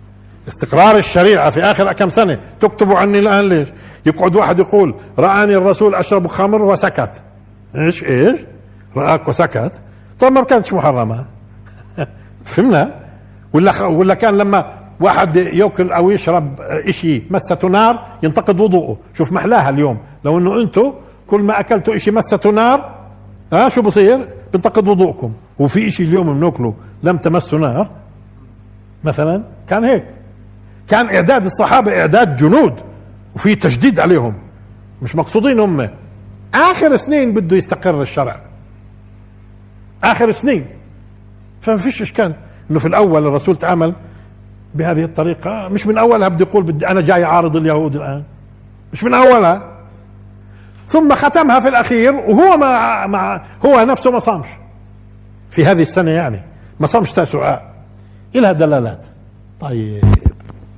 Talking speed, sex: 130 wpm, male